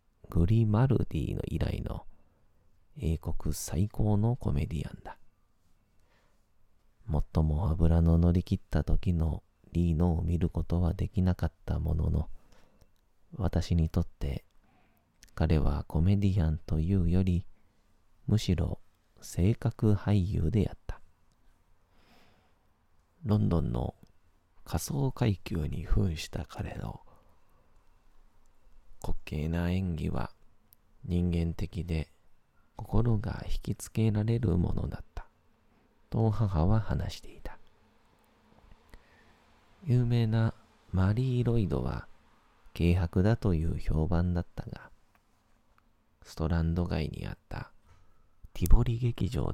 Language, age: Japanese, 40-59